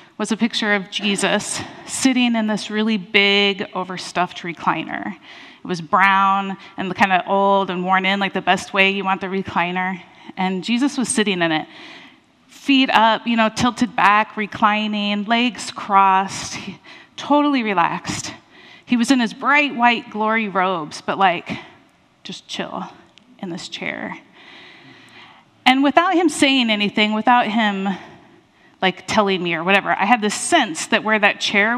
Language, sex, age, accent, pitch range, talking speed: English, female, 30-49, American, 190-245 Hz, 155 wpm